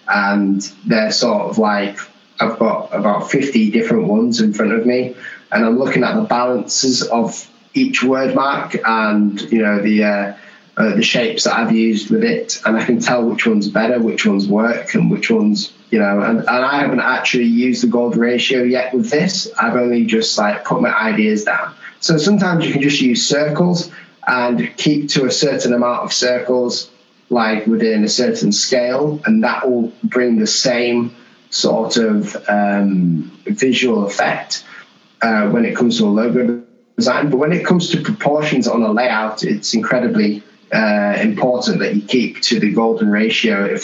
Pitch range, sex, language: 110-160 Hz, male, English